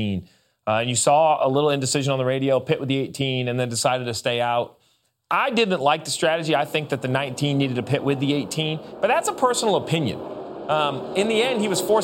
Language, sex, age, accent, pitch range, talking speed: English, male, 30-49, American, 140-185 Hz, 240 wpm